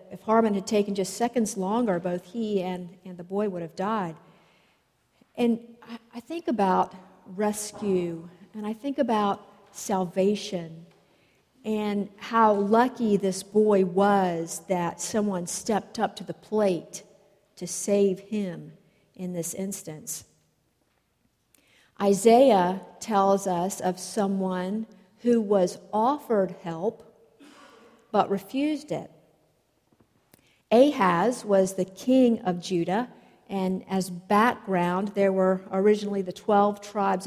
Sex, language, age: female, English, 50-69